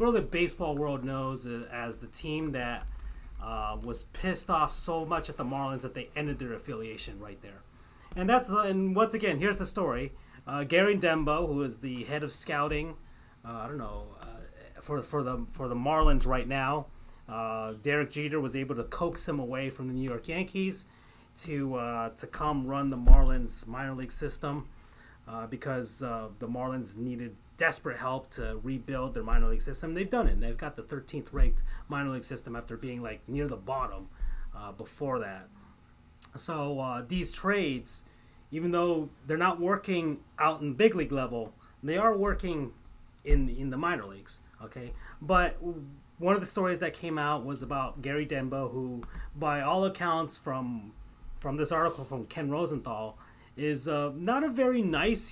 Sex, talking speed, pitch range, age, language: male, 180 wpm, 120-160 Hz, 30-49, English